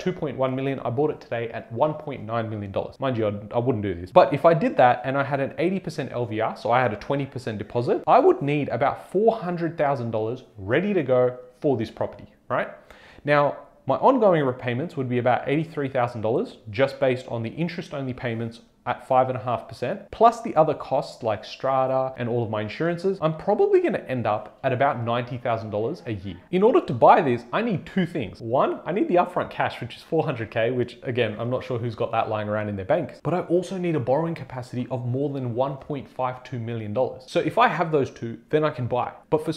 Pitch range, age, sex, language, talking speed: 120-155 Hz, 30-49, male, English, 215 wpm